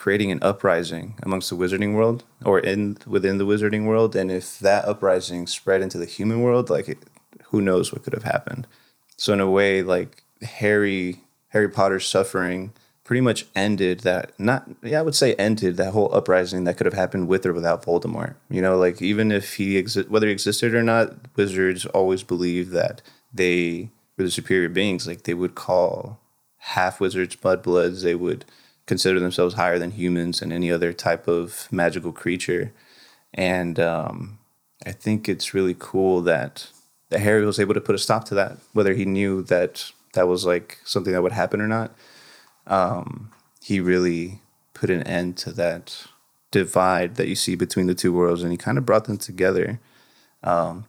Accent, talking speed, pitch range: American, 185 wpm, 90-105 Hz